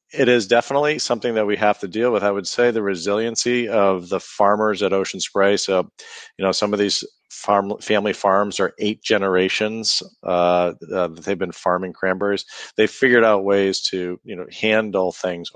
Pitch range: 90-105 Hz